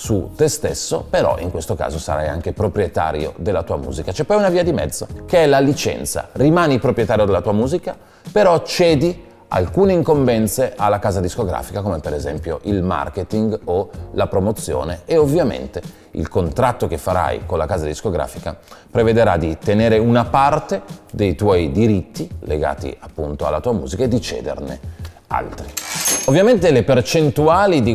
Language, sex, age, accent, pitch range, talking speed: Italian, male, 30-49, native, 90-135 Hz, 160 wpm